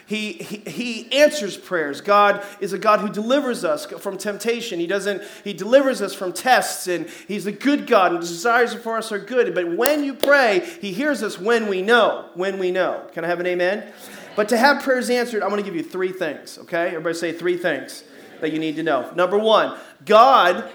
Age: 40-59